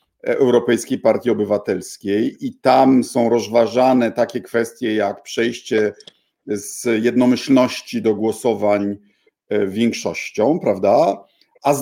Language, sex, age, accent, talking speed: Polish, male, 50-69, native, 95 wpm